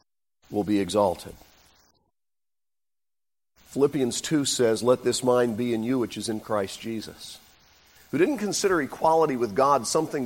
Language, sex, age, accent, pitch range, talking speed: English, male, 50-69, American, 105-165 Hz, 140 wpm